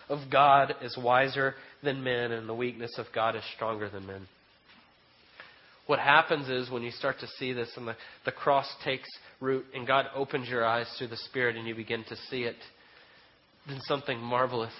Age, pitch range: 30-49, 120-135 Hz